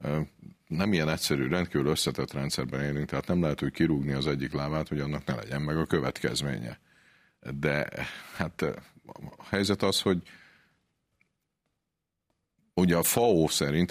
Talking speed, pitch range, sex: 140 wpm, 70-80 Hz, male